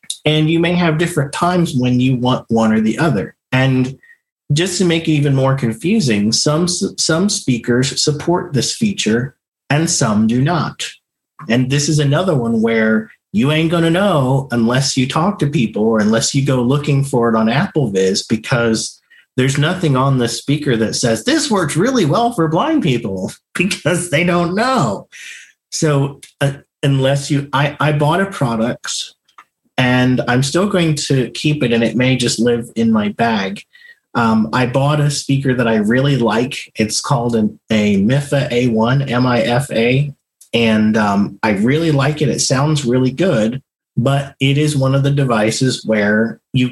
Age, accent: 40-59, American